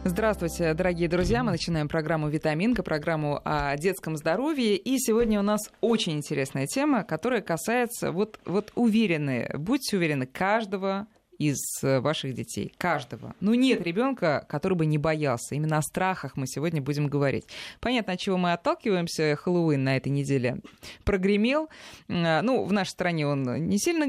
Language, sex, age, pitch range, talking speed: Russian, female, 20-39, 145-205 Hz, 150 wpm